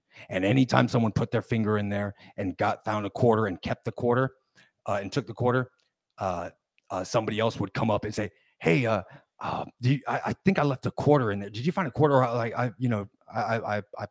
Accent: American